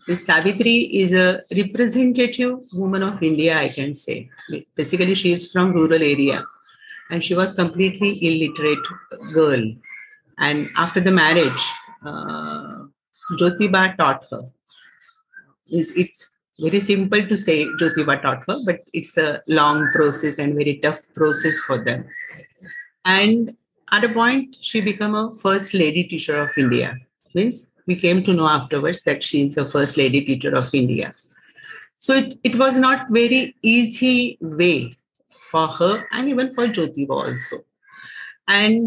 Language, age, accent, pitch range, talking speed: English, 50-69, Indian, 155-225 Hz, 145 wpm